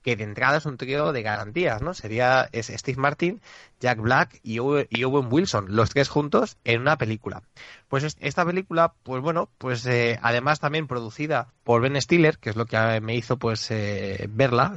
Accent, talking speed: Spanish, 185 wpm